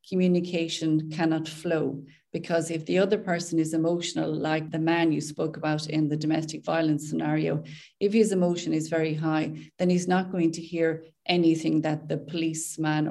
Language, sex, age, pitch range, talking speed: English, female, 30-49, 155-175 Hz, 170 wpm